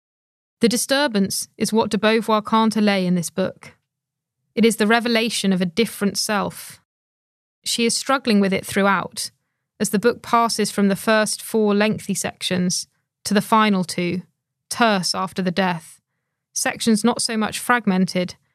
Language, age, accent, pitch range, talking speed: English, 20-39, British, 180-220 Hz, 155 wpm